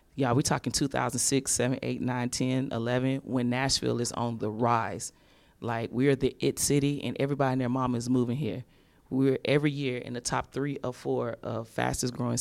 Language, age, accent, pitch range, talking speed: English, 30-49, American, 120-140 Hz, 195 wpm